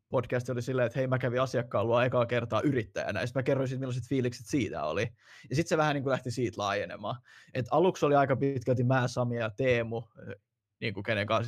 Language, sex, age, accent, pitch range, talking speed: Finnish, male, 20-39, native, 110-130 Hz, 215 wpm